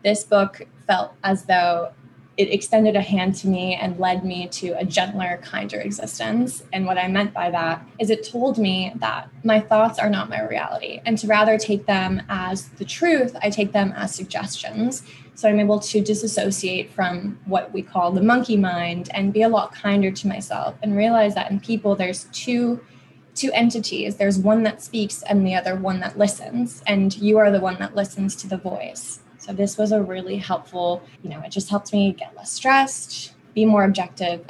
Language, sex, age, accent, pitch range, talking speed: English, female, 20-39, American, 185-215 Hz, 200 wpm